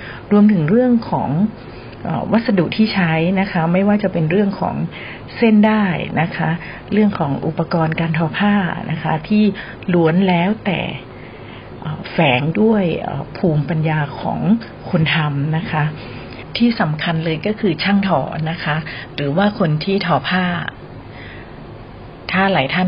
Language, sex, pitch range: Thai, female, 150-190 Hz